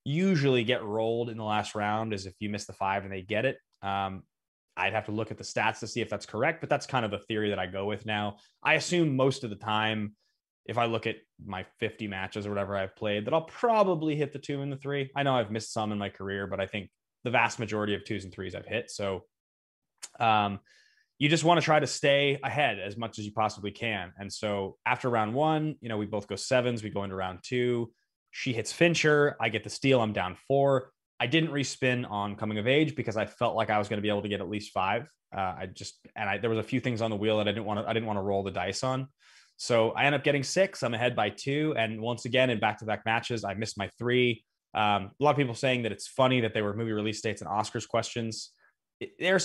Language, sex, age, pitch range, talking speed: English, male, 20-39, 105-130 Hz, 260 wpm